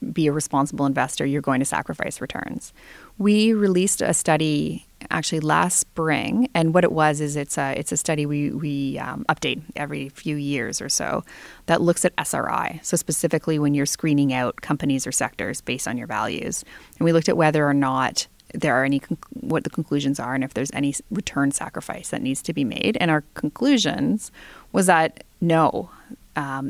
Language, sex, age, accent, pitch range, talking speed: English, female, 30-49, American, 140-180 Hz, 190 wpm